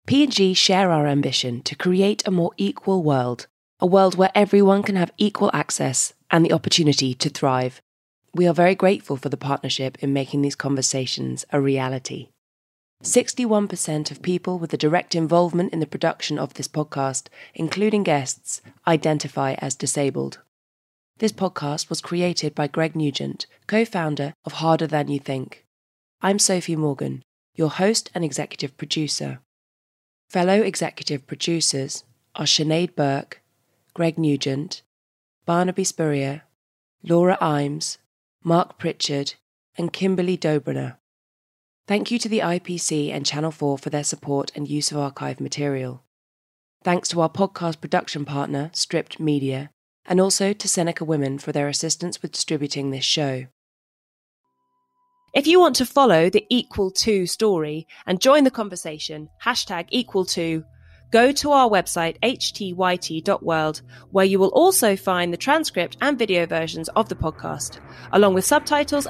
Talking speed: 145 wpm